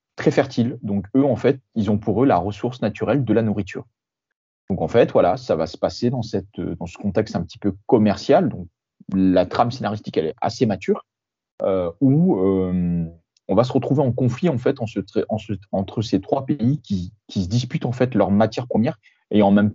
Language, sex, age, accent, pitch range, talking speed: French, male, 30-49, French, 100-130 Hz, 220 wpm